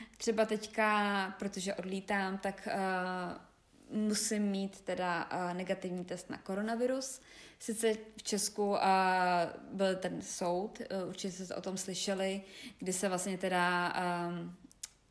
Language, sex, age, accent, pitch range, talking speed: Czech, female, 20-39, native, 180-215 Hz, 125 wpm